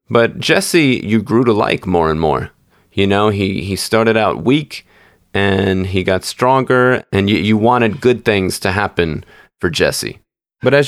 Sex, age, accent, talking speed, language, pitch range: male, 30-49, American, 175 wpm, English, 95-120 Hz